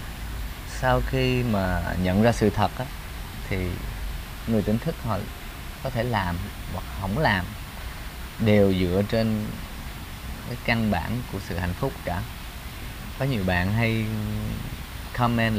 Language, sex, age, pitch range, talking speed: Vietnamese, male, 20-39, 85-110 Hz, 135 wpm